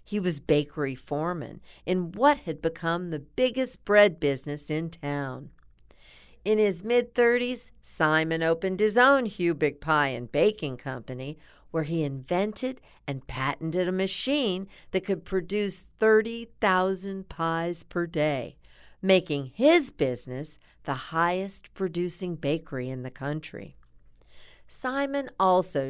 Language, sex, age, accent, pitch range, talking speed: English, female, 50-69, American, 140-190 Hz, 120 wpm